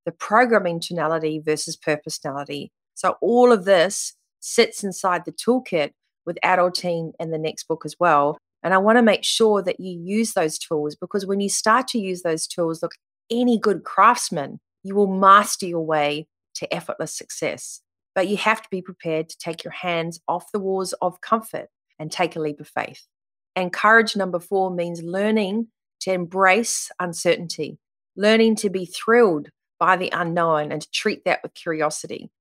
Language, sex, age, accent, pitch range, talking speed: English, female, 30-49, Australian, 165-200 Hz, 180 wpm